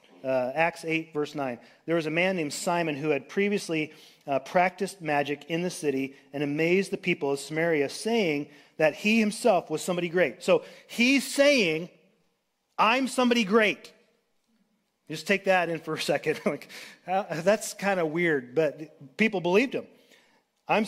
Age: 40-59